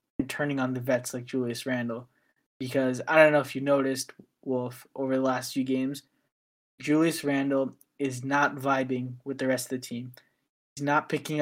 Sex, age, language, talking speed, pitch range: male, 20-39, English, 180 wpm, 130-145 Hz